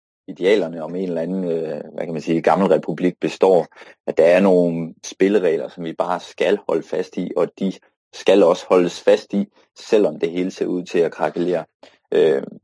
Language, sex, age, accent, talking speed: Danish, male, 30-49, native, 195 wpm